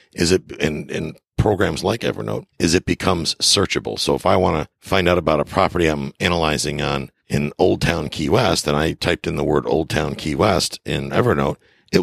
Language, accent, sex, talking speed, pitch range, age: English, American, male, 210 wpm, 70-85 Hz, 50-69